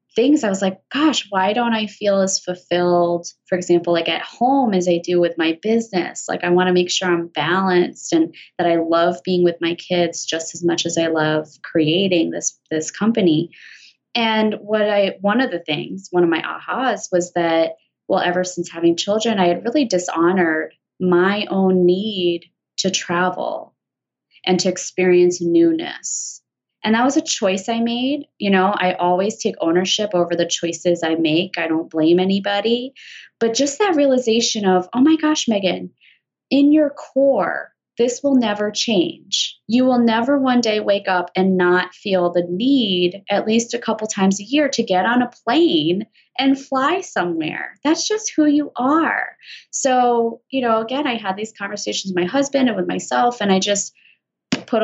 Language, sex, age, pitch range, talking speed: English, female, 20-39, 175-240 Hz, 185 wpm